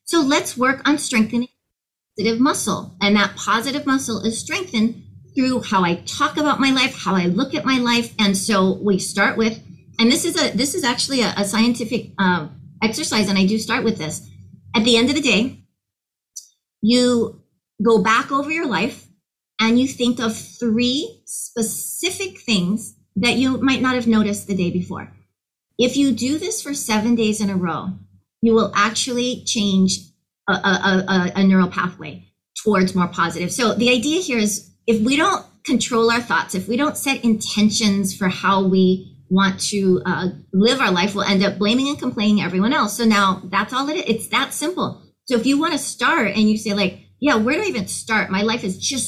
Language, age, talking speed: English, 40-59, 195 wpm